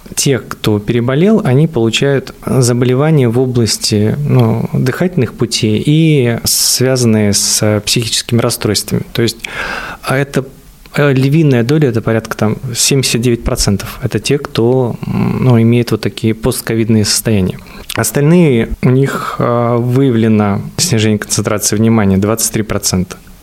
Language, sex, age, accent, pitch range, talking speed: Russian, male, 20-39, native, 105-130 Hz, 95 wpm